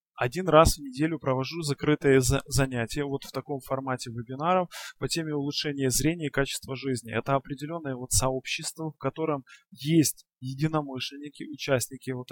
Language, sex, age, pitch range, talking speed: Russian, male, 20-39, 130-150 Hz, 145 wpm